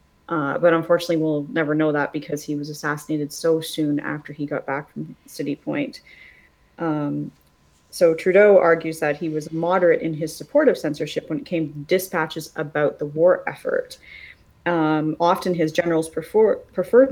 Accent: American